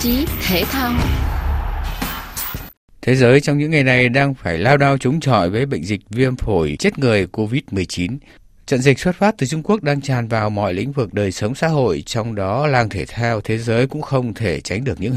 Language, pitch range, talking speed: Vietnamese, 105-140 Hz, 200 wpm